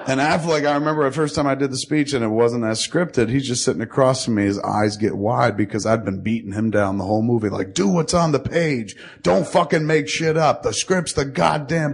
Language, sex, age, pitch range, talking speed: English, male, 30-49, 100-140 Hz, 250 wpm